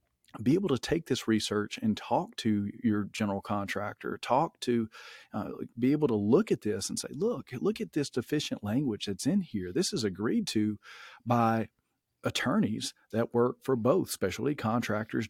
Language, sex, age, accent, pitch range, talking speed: English, male, 40-59, American, 105-120 Hz, 175 wpm